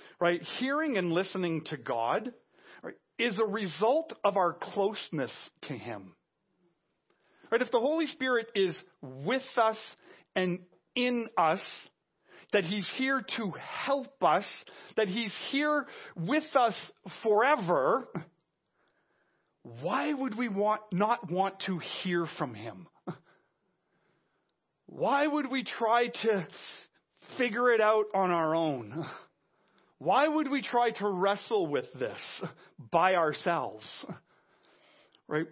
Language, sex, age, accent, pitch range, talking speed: English, male, 40-59, American, 165-230 Hz, 115 wpm